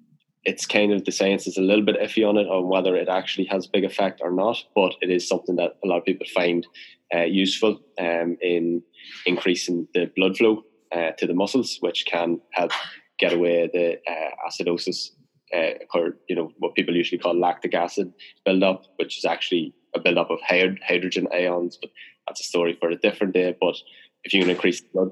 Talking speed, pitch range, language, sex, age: 200 wpm, 85-95 Hz, English, male, 20-39